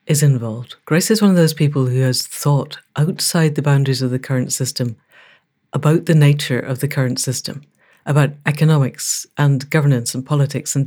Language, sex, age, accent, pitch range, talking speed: English, female, 60-79, British, 135-160 Hz, 175 wpm